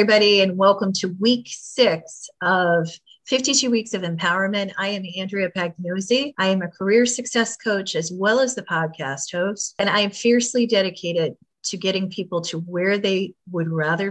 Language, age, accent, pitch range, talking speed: English, 40-59, American, 170-215 Hz, 170 wpm